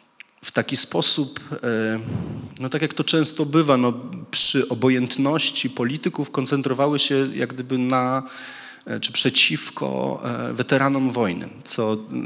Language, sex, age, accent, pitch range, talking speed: Polish, male, 30-49, native, 105-125 Hz, 105 wpm